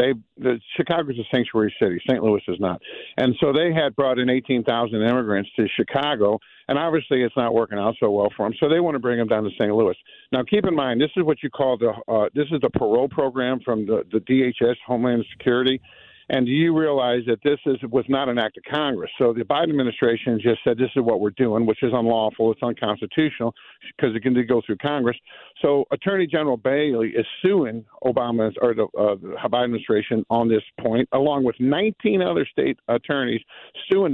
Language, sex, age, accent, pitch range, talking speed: English, male, 60-79, American, 115-145 Hz, 215 wpm